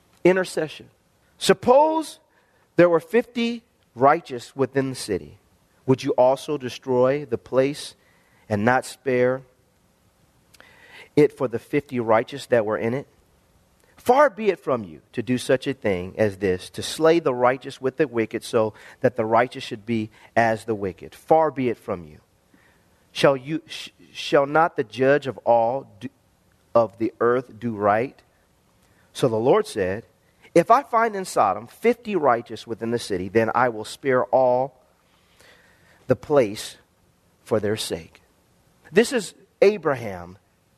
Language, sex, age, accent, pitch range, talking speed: English, male, 40-59, American, 115-155 Hz, 150 wpm